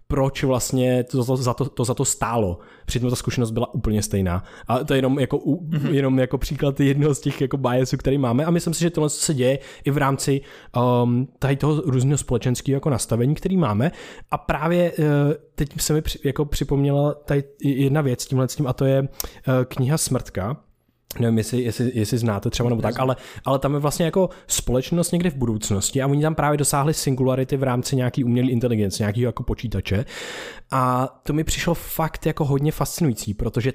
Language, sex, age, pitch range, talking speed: Czech, male, 20-39, 120-145 Hz, 195 wpm